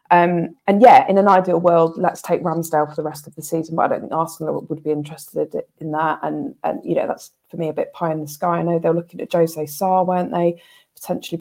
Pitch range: 165-190 Hz